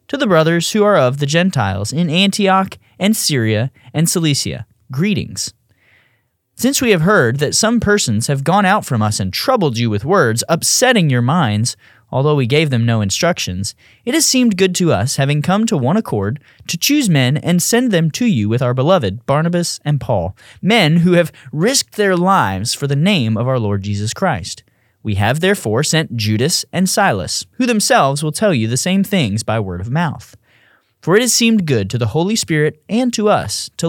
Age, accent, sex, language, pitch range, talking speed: 30-49, American, male, English, 120-190 Hz, 200 wpm